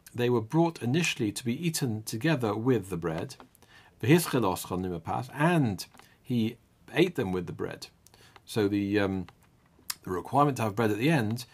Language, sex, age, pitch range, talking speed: English, male, 50-69, 105-135 Hz, 150 wpm